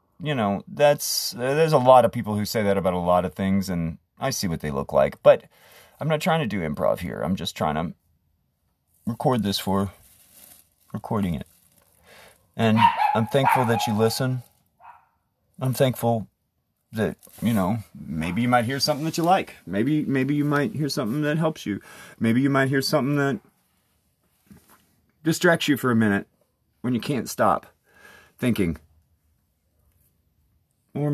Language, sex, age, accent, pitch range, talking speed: English, male, 30-49, American, 90-145 Hz, 165 wpm